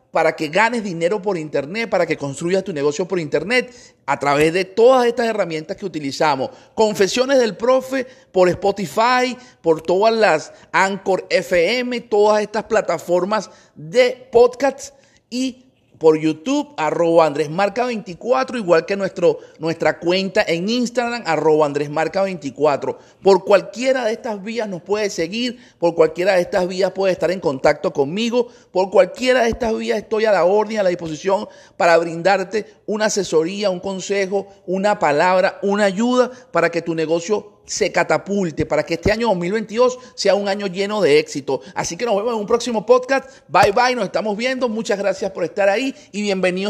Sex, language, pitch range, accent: male, Spanish, 175-240 Hz, Venezuelan